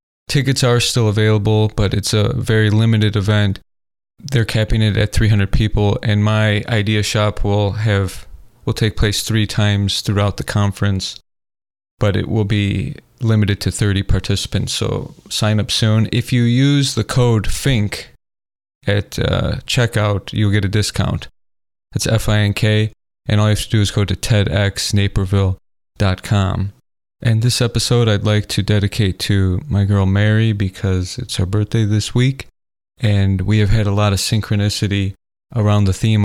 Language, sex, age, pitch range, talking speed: English, male, 20-39, 100-110 Hz, 155 wpm